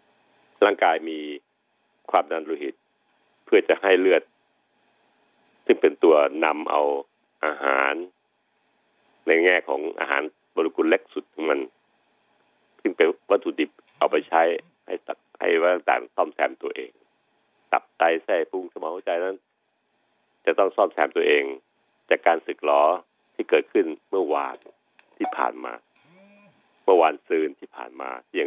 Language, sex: Thai, male